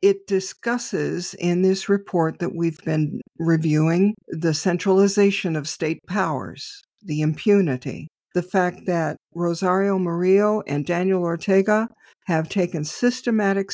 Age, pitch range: 60-79, 155-190 Hz